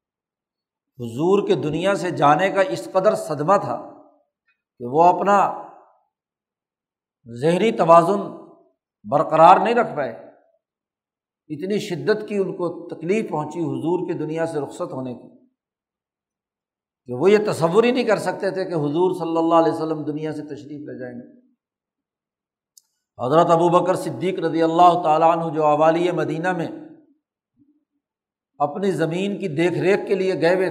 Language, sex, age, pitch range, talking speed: Urdu, male, 60-79, 155-190 Hz, 145 wpm